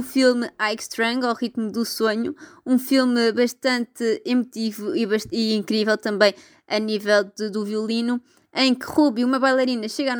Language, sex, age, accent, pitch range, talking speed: Portuguese, female, 20-39, Brazilian, 220-265 Hz, 170 wpm